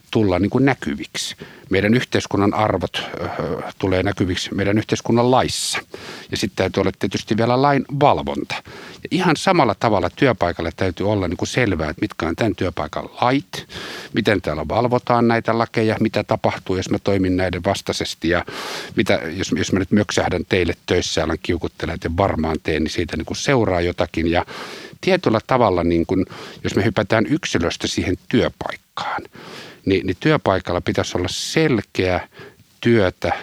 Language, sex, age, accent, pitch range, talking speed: Finnish, male, 50-69, native, 85-115 Hz, 150 wpm